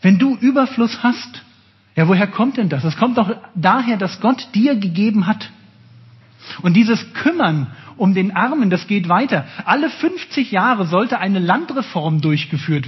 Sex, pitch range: male, 150-230 Hz